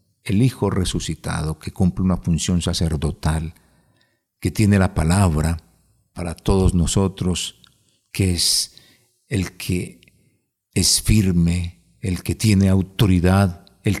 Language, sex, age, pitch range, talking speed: Spanish, male, 50-69, 90-110 Hz, 110 wpm